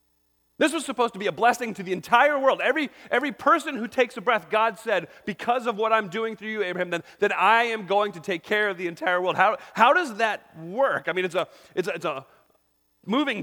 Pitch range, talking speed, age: 150-210 Hz, 245 wpm, 30-49